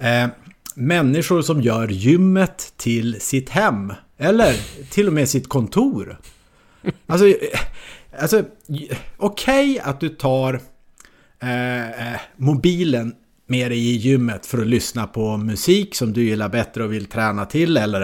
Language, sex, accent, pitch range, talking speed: English, male, Norwegian, 115-165 Hz, 135 wpm